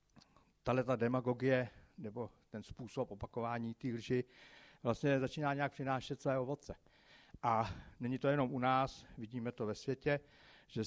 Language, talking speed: Czech, 140 wpm